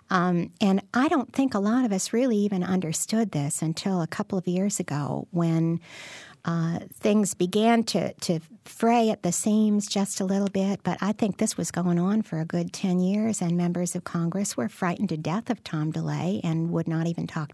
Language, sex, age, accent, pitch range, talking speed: English, female, 50-69, American, 160-205 Hz, 210 wpm